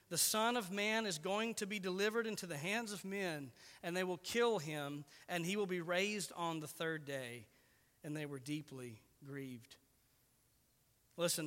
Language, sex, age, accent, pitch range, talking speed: English, male, 40-59, American, 165-210 Hz, 180 wpm